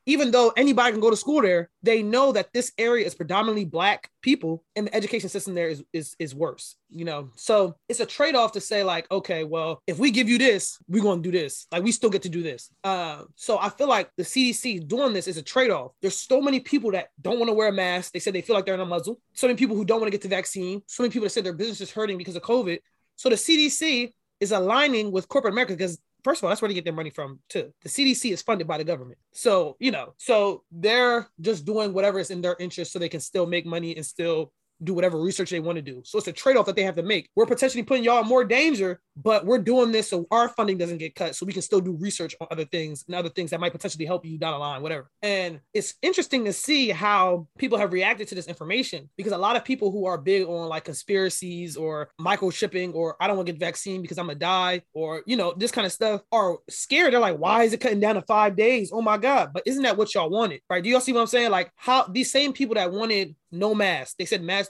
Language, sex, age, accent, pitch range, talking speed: English, male, 20-39, American, 175-230 Hz, 270 wpm